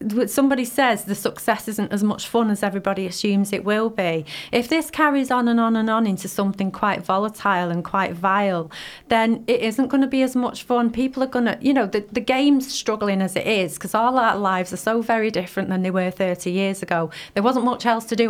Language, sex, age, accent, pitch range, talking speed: English, female, 30-49, British, 195-255 Hz, 230 wpm